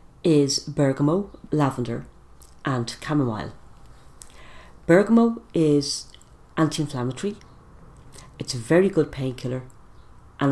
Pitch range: 110-140 Hz